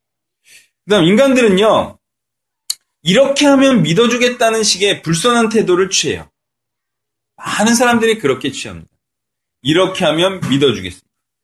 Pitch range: 150-220 Hz